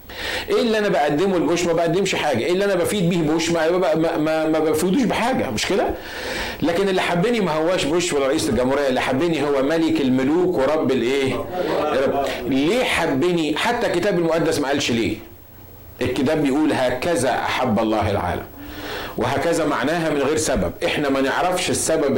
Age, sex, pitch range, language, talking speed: 50-69, male, 125-185 Hz, Arabic, 160 wpm